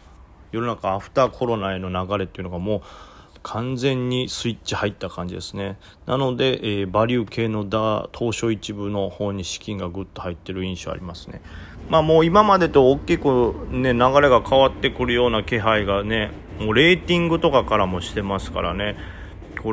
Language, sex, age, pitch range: Japanese, male, 30-49, 95-115 Hz